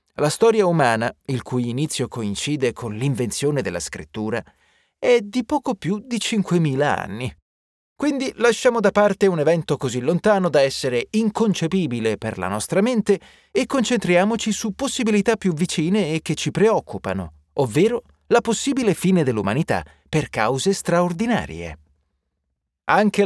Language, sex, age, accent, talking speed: Italian, male, 30-49, native, 135 wpm